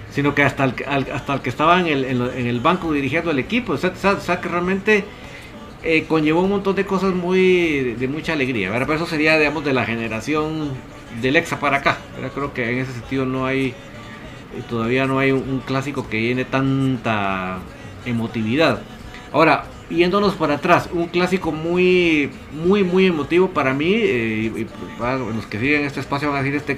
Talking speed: 195 wpm